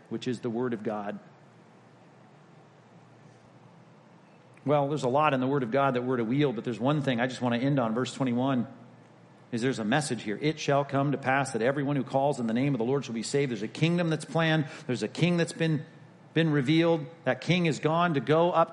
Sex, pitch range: male, 135-175 Hz